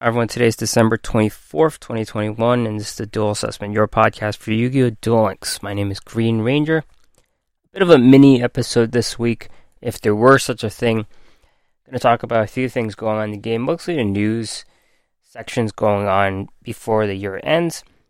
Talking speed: 195 wpm